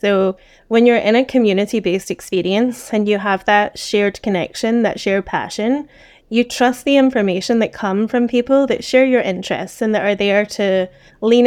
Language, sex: English, female